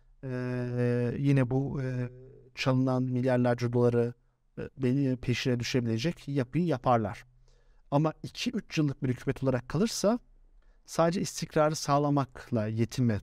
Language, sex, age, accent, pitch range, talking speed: Turkish, male, 50-69, native, 125-155 Hz, 110 wpm